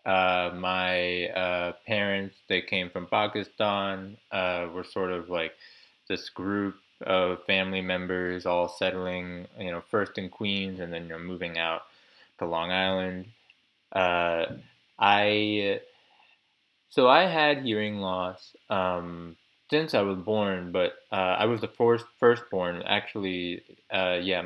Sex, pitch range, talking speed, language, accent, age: male, 90-105 Hz, 135 wpm, English, American, 20-39